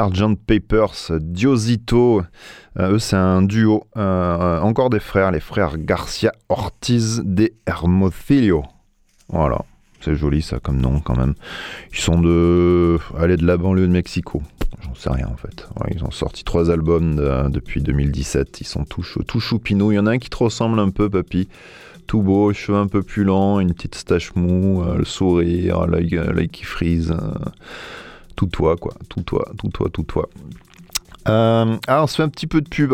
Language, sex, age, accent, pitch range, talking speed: French, male, 30-49, French, 75-105 Hz, 185 wpm